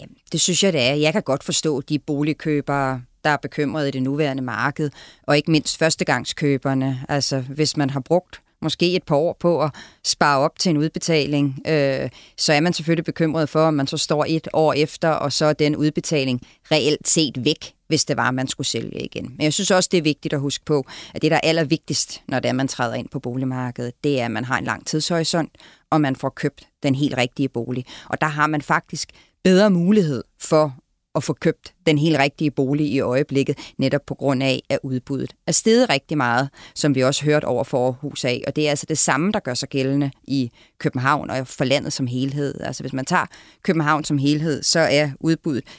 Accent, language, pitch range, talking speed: native, Danish, 135-155 Hz, 220 wpm